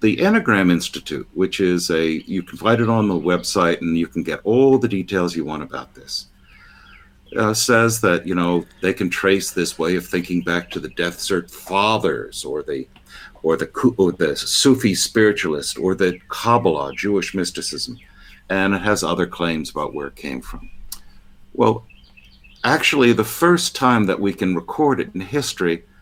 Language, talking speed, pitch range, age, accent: English, 175 wpm, 85-115 Hz, 60-79, American